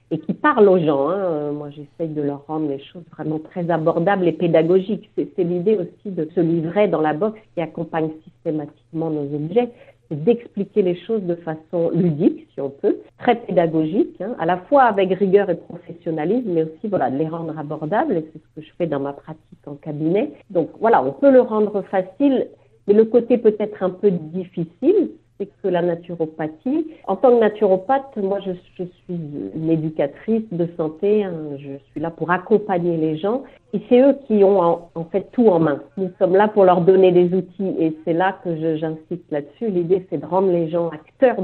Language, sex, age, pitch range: French, female, 50-69, 155-200 Hz